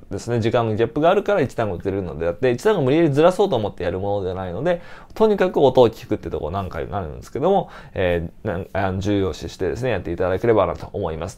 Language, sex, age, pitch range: Japanese, male, 20-39, 110-170 Hz